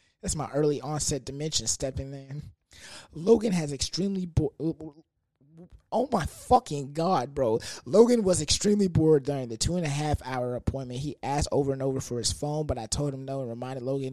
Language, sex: English, male